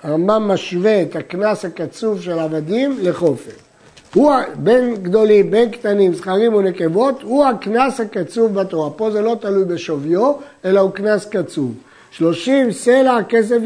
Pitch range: 175-230 Hz